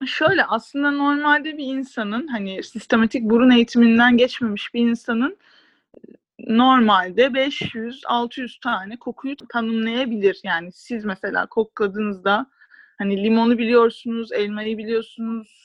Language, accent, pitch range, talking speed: Turkish, native, 220-260 Hz, 100 wpm